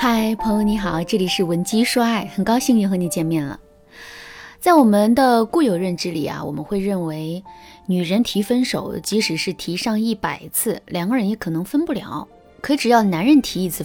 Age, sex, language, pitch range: 20-39, female, Chinese, 175-235 Hz